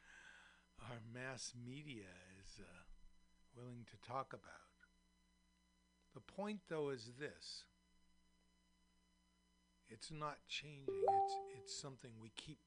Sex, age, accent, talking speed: male, 60-79, American, 105 wpm